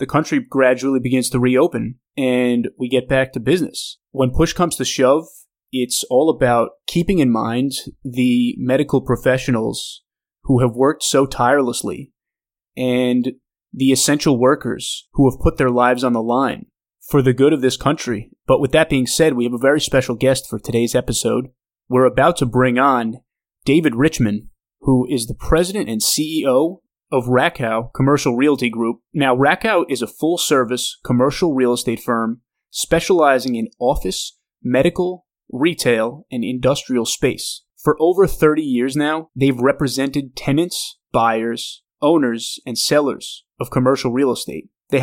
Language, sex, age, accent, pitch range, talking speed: English, male, 30-49, American, 125-145 Hz, 155 wpm